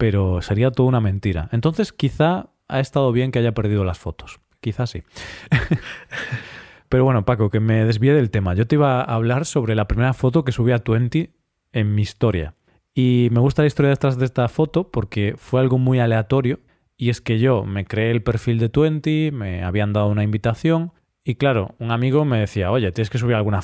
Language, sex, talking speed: Spanish, male, 205 wpm